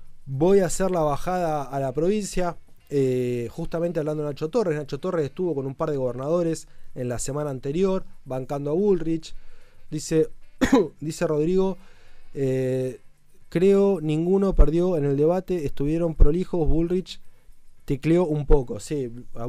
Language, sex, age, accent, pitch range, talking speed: Spanish, male, 20-39, Argentinian, 125-160 Hz, 145 wpm